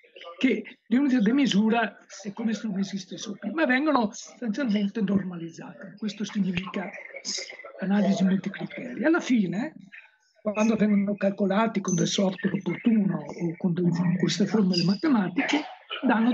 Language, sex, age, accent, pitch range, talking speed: Italian, male, 60-79, native, 195-255 Hz, 130 wpm